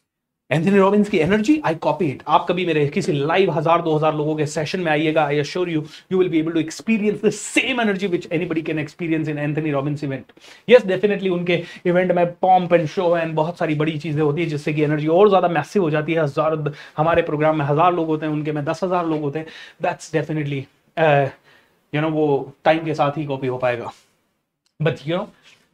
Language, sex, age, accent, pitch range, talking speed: Hindi, male, 30-49, native, 155-235 Hz, 120 wpm